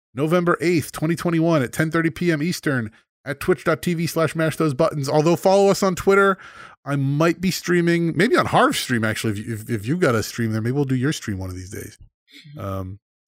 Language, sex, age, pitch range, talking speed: English, male, 30-49, 120-175 Hz, 210 wpm